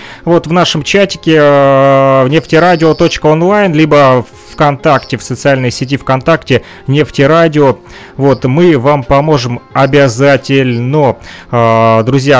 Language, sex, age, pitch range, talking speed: Russian, male, 30-49, 125-160 Hz, 85 wpm